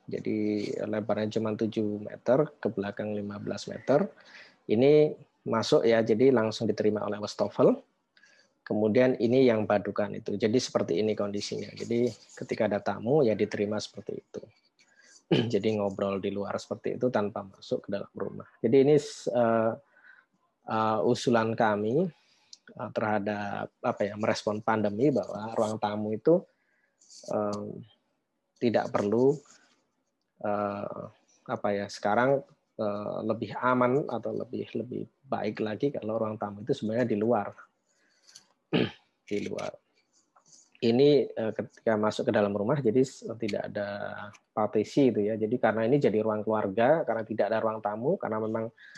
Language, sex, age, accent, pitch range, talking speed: English, male, 20-39, Indonesian, 105-120 Hz, 130 wpm